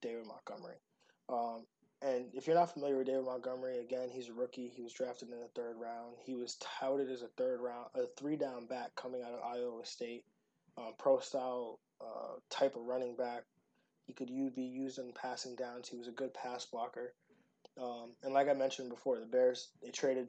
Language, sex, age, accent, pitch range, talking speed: English, male, 20-39, American, 125-150 Hz, 205 wpm